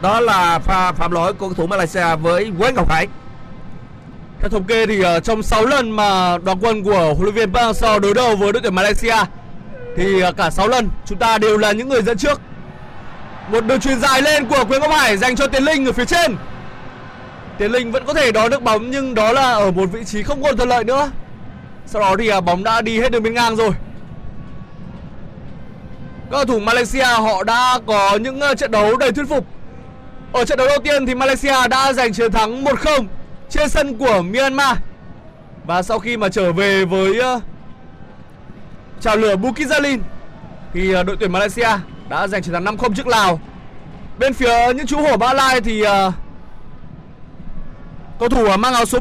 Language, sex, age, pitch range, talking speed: Vietnamese, male, 20-39, 195-260 Hz, 195 wpm